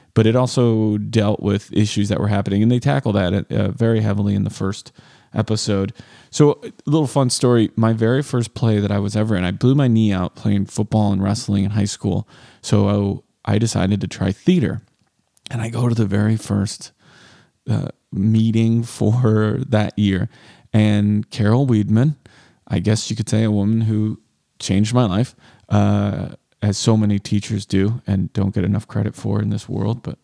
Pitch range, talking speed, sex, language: 100-120 Hz, 190 wpm, male, English